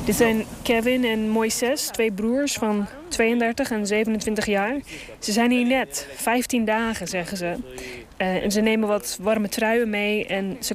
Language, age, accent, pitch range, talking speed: Dutch, 20-39, Dutch, 160-230 Hz, 160 wpm